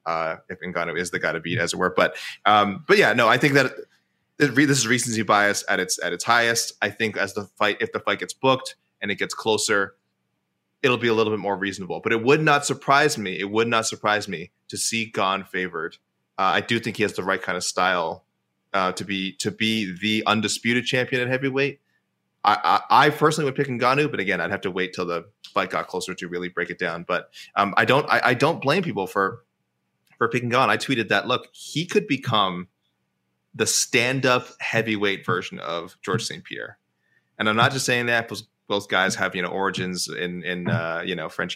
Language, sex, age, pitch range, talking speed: English, male, 20-39, 90-125 Hz, 225 wpm